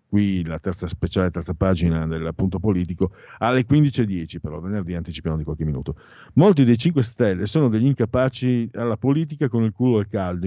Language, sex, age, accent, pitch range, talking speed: Italian, male, 50-69, native, 90-125 Hz, 170 wpm